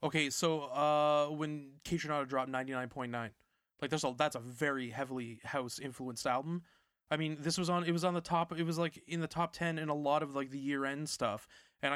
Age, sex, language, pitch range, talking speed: 20-39, male, English, 130-155 Hz, 235 wpm